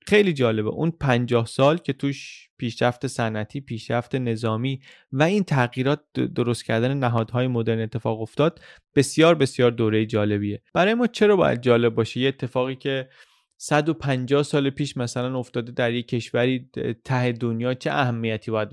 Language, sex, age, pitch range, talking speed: Persian, male, 30-49, 120-155 Hz, 145 wpm